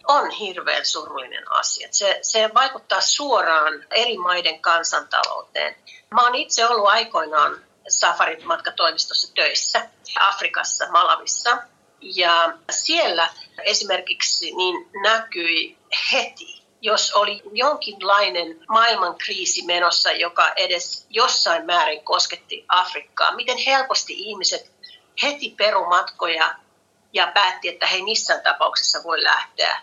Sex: female